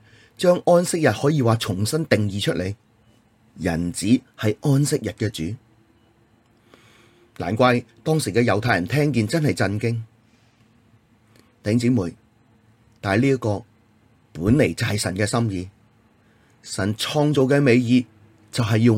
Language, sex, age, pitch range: Chinese, male, 30-49, 110-120 Hz